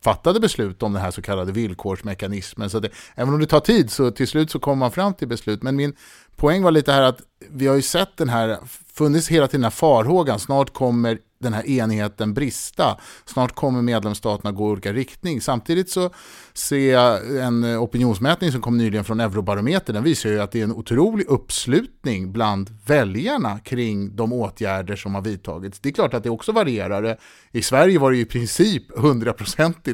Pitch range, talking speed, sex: 110-145 Hz, 195 wpm, male